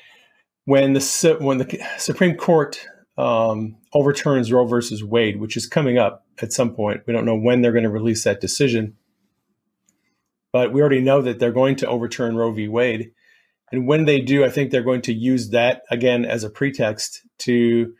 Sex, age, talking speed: male, 40-59, 185 wpm